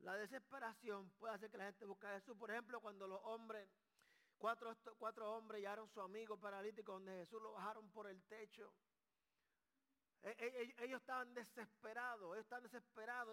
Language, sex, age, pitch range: Spanish, male, 30-49, 220-275 Hz